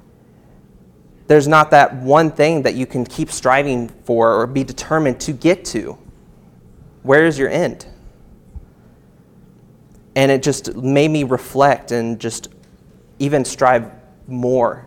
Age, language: 30-49, English